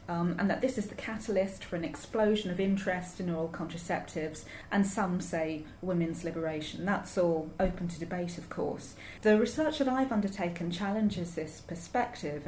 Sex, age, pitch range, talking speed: female, 30-49, 175-230 Hz, 170 wpm